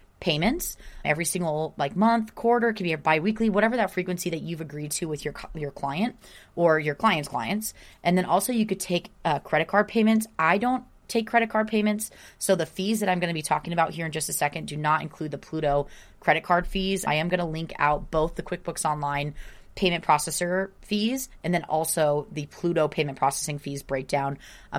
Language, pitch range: English, 145-190 Hz